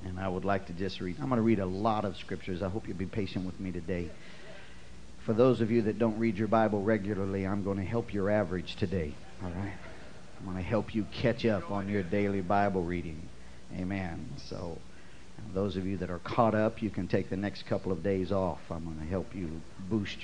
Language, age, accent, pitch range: English, 50-69, American, 90-105 Hz